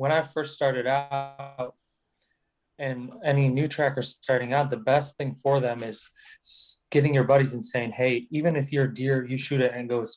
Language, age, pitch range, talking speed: English, 20-39, 125-145 Hz, 195 wpm